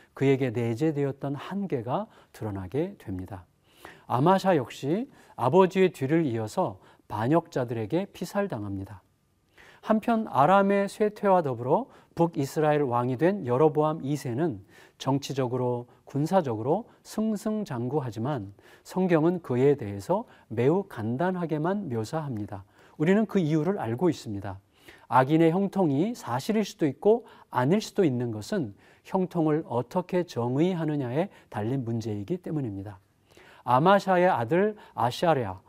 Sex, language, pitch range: male, Korean, 125-185 Hz